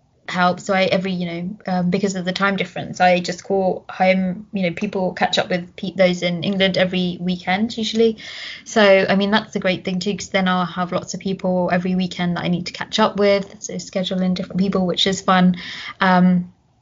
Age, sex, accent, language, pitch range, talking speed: 20-39, female, British, English, 180-200 Hz, 215 wpm